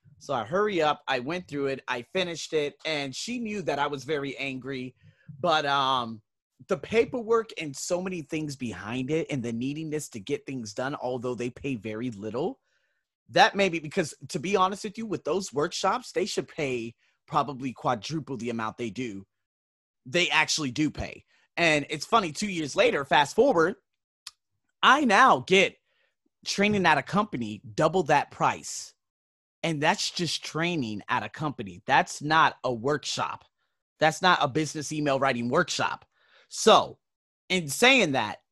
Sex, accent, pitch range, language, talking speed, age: male, American, 130-175 Hz, English, 165 wpm, 30-49